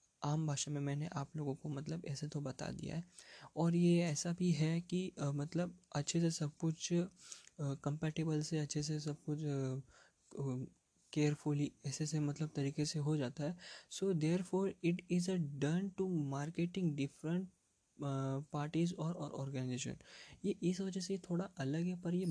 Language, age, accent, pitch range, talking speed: Hindi, 20-39, native, 135-165 Hz, 165 wpm